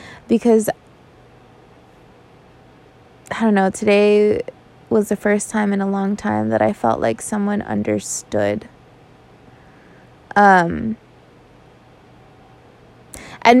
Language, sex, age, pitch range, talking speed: English, female, 20-39, 175-205 Hz, 95 wpm